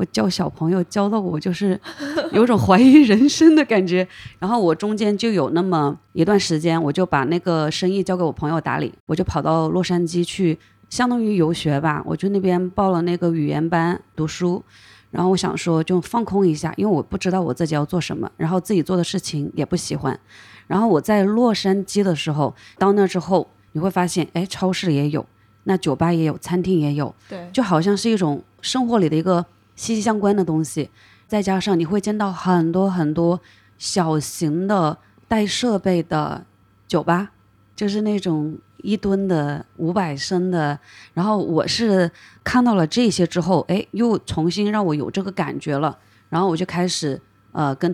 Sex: female